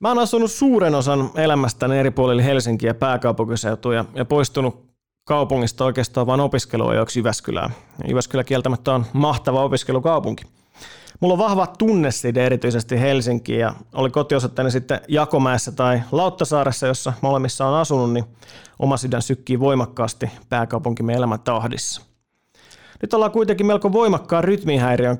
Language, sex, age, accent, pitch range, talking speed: Finnish, male, 30-49, native, 125-150 Hz, 135 wpm